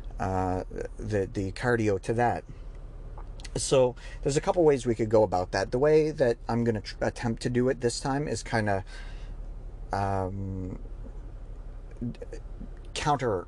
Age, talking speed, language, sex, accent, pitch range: 40-59, 150 wpm, English, male, American, 100-120 Hz